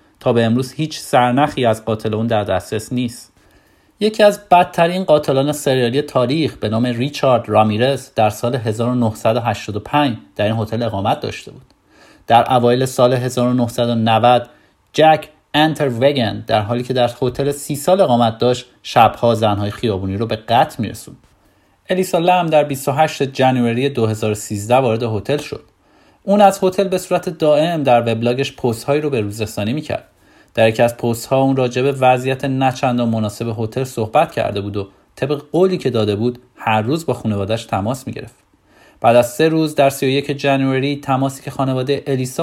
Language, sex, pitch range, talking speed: Persian, male, 115-145 Hz, 165 wpm